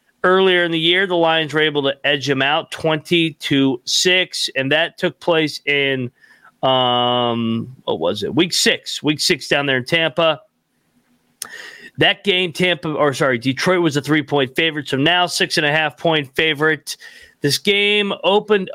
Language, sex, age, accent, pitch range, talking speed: English, male, 40-59, American, 135-185 Hz, 175 wpm